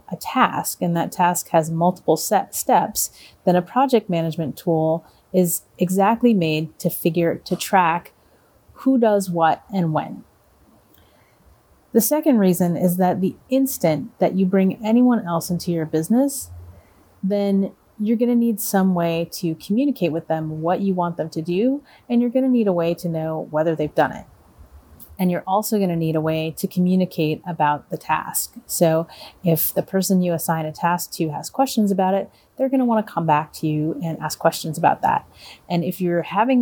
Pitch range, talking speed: 160-200 Hz, 190 wpm